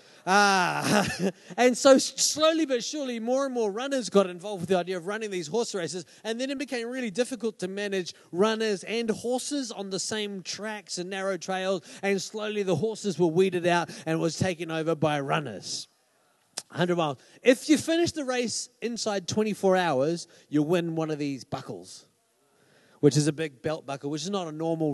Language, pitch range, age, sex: English, 175-230 Hz, 30-49, male